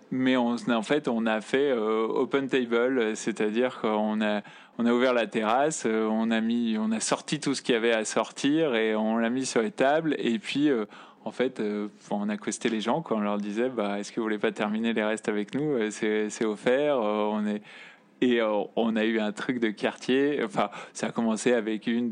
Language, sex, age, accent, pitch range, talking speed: French, male, 20-39, French, 110-130 Hz, 230 wpm